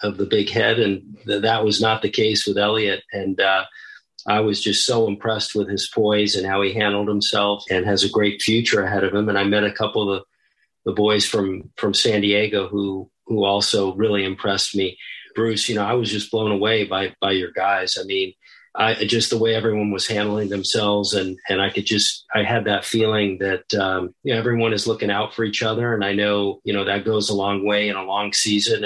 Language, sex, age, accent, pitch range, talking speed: English, male, 40-59, American, 100-110 Hz, 230 wpm